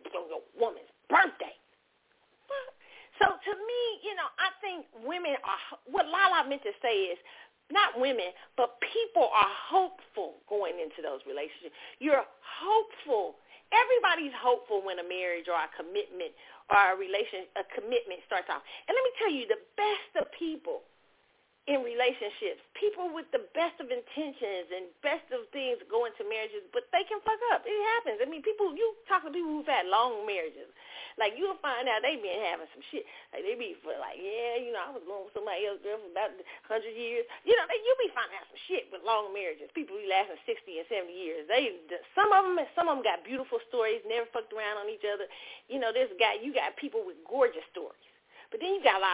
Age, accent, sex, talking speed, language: 40-59, American, female, 205 wpm, English